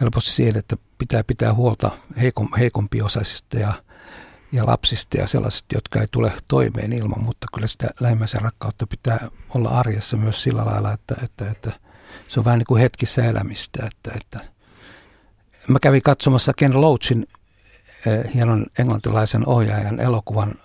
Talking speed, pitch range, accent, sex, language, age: 140 wpm, 105-120 Hz, native, male, Finnish, 60-79